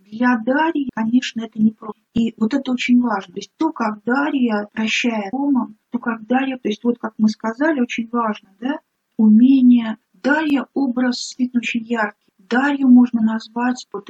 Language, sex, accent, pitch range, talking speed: Russian, female, native, 215-255 Hz, 160 wpm